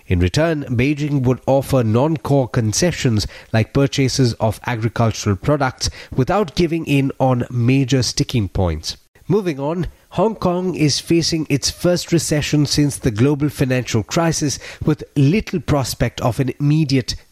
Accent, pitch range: Indian, 105-140 Hz